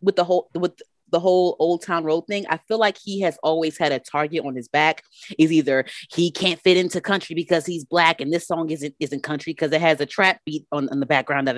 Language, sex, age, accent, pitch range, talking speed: English, female, 30-49, American, 145-175 Hz, 255 wpm